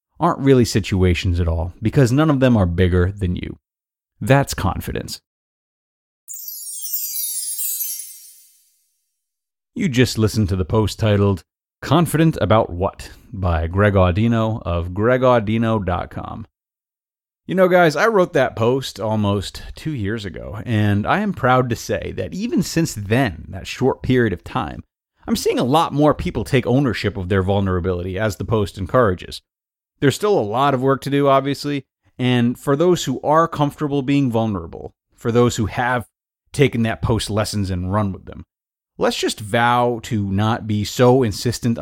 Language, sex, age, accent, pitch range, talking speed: English, male, 30-49, American, 95-125 Hz, 155 wpm